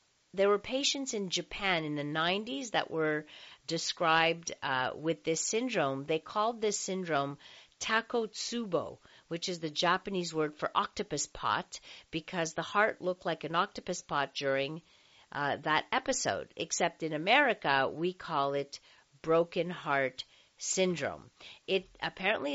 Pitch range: 150-195 Hz